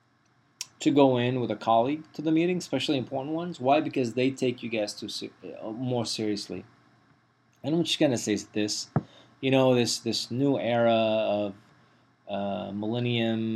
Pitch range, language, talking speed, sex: 105-135 Hz, English, 165 wpm, male